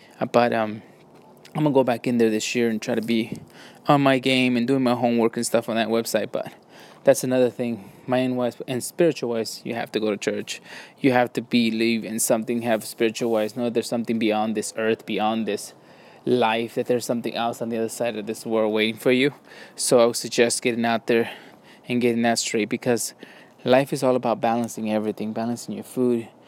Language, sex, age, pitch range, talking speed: English, male, 20-39, 115-125 Hz, 215 wpm